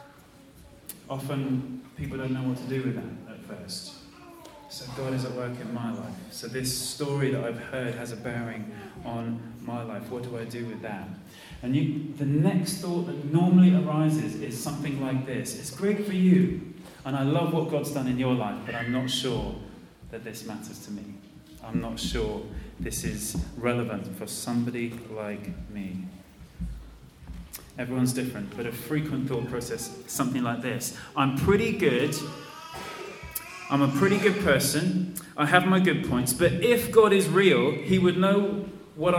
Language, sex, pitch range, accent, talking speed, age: English, male, 115-150 Hz, British, 170 wpm, 30-49